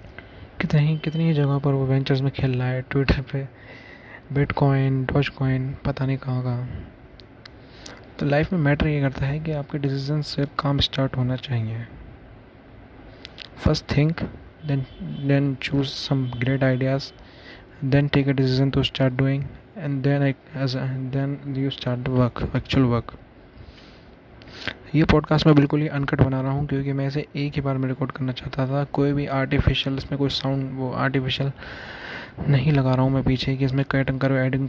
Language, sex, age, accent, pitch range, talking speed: Hindi, male, 20-39, native, 130-140 Hz, 130 wpm